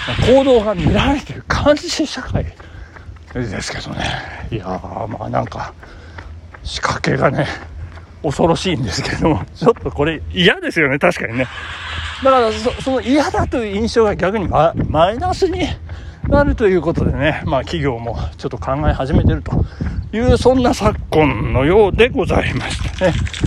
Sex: male